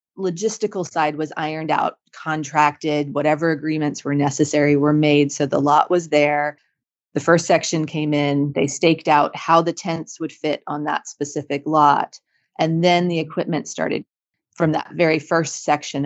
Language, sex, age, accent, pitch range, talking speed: English, female, 30-49, American, 150-170 Hz, 165 wpm